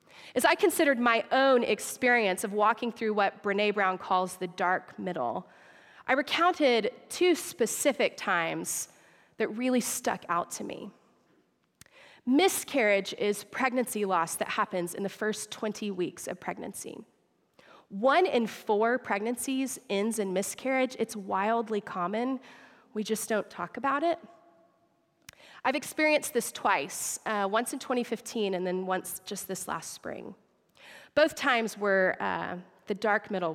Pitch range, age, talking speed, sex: 200-270 Hz, 30-49, 140 wpm, female